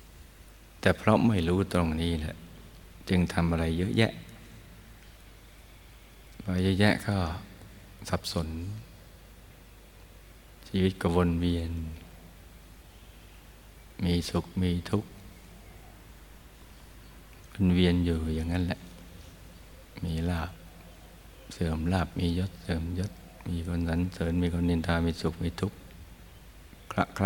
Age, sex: 60-79, male